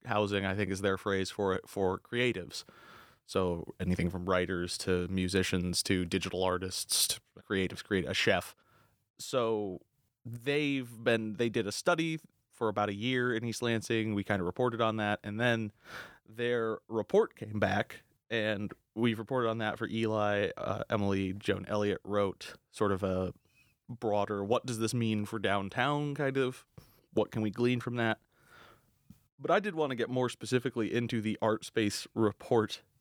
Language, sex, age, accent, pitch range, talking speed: English, male, 20-39, American, 100-125 Hz, 165 wpm